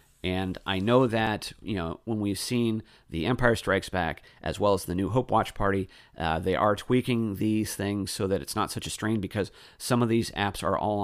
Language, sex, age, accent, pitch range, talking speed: English, male, 40-59, American, 90-115 Hz, 225 wpm